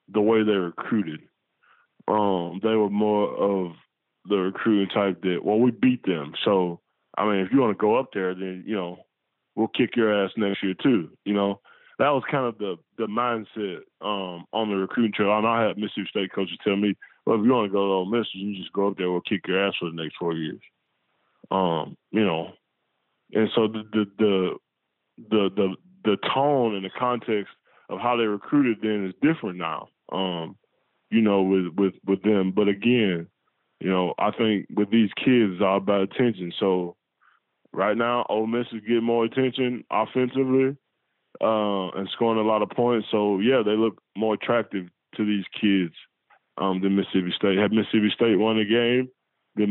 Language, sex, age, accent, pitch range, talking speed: English, male, 10-29, American, 95-115 Hz, 195 wpm